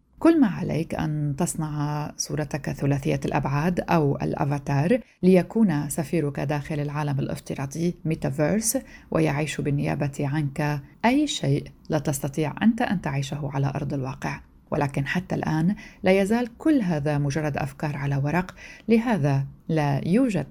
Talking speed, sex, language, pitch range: 125 wpm, female, Arabic, 145-170 Hz